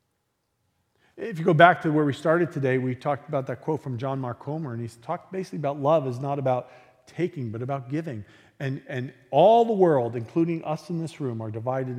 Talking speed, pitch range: 215 wpm, 120-180 Hz